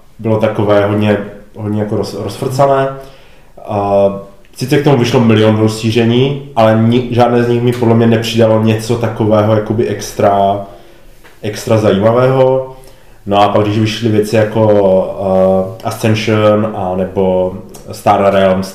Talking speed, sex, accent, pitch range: 130 wpm, male, native, 100-115 Hz